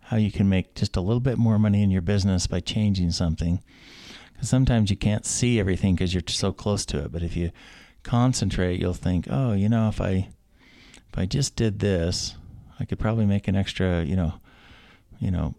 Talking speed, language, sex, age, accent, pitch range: 210 wpm, English, male, 50-69, American, 90-105 Hz